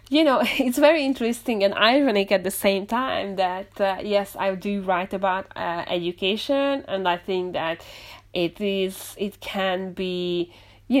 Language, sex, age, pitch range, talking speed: English, female, 30-49, 190-235 Hz, 165 wpm